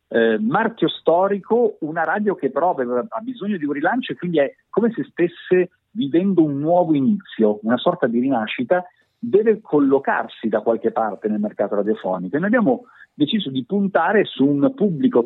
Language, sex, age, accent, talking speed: Italian, male, 50-69, native, 170 wpm